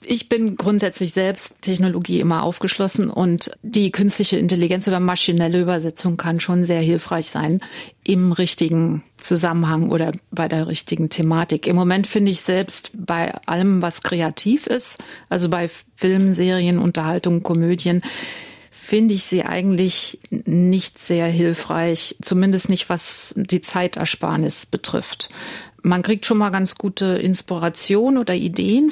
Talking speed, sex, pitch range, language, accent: 135 wpm, female, 175-205 Hz, German, German